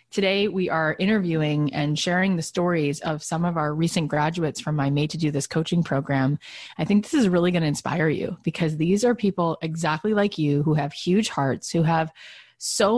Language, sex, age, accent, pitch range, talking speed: English, female, 30-49, American, 160-210 Hz, 210 wpm